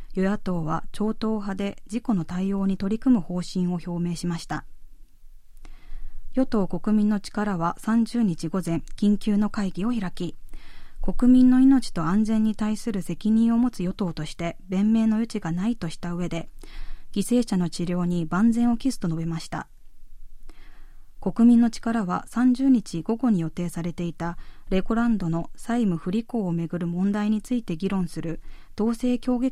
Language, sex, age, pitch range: Japanese, female, 20-39, 175-225 Hz